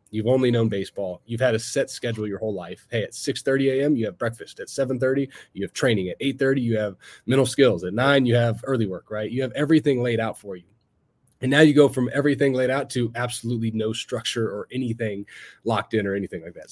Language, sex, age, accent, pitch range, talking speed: English, male, 30-49, American, 105-130 Hz, 230 wpm